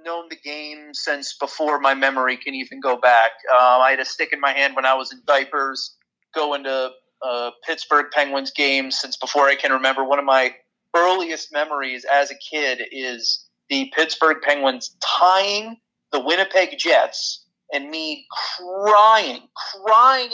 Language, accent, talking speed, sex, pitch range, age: English, American, 160 wpm, male, 135-160 Hz, 30-49